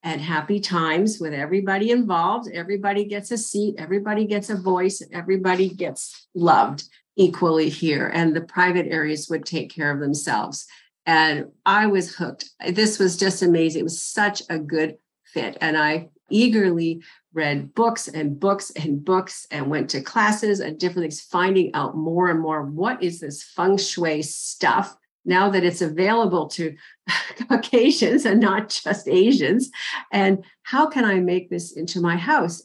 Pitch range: 160-200 Hz